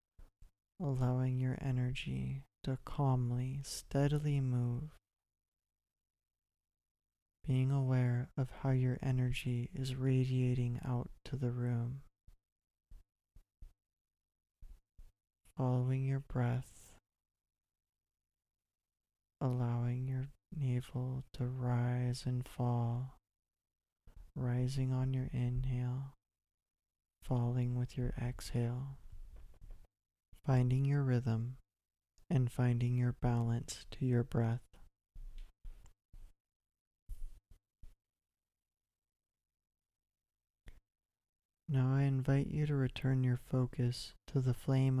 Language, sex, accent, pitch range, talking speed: English, male, American, 90-130 Hz, 75 wpm